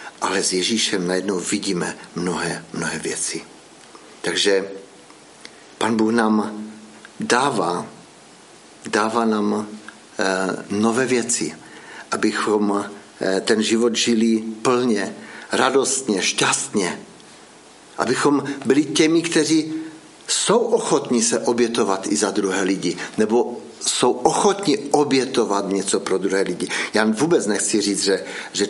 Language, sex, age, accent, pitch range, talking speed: Czech, male, 60-79, native, 100-120 Hz, 105 wpm